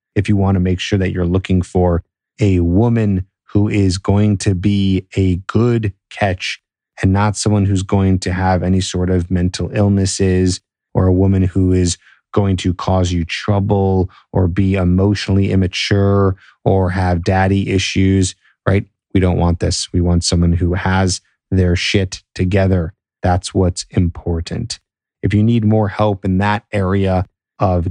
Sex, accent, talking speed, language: male, American, 160 wpm, English